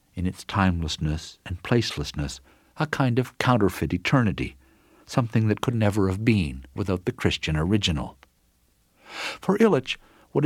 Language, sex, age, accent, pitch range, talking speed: English, male, 60-79, American, 80-125 Hz, 130 wpm